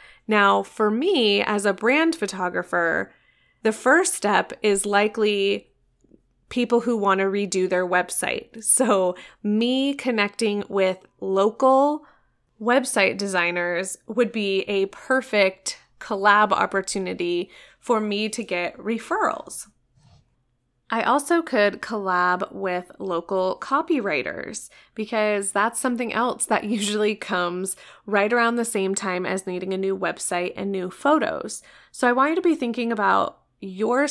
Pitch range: 195-245 Hz